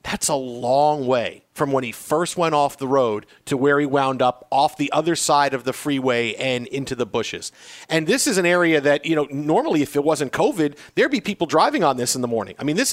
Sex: male